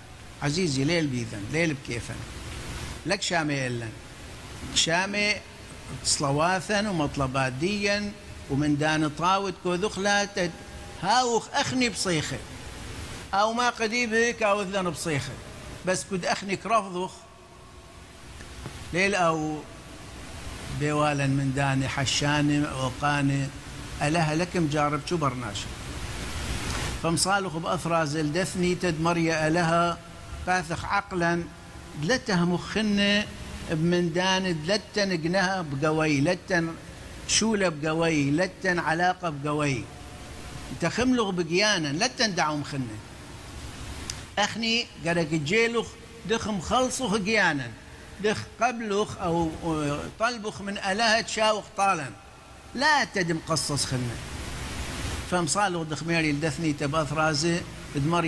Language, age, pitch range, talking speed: English, 60-79, 145-195 Hz, 90 wpm